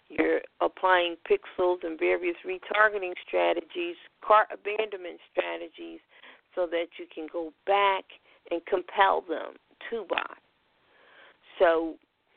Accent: American